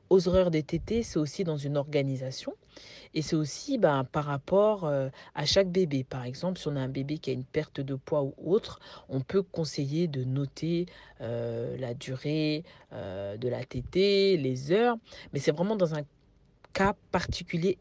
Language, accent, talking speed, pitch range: French, French, 185 wpm, 135-180 Hz